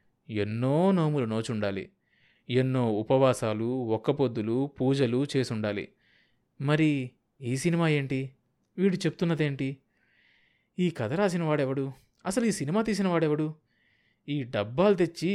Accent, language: native, Telugu